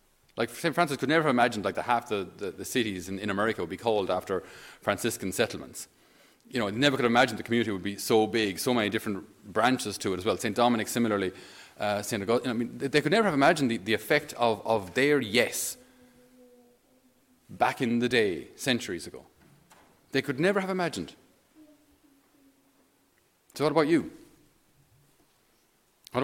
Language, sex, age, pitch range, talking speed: English, male, 30-49, 110-145 Hz, 180 wpm